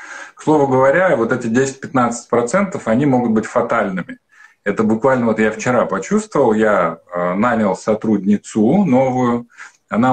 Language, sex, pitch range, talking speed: Russian, male, 110-145 Hz, 125 wpm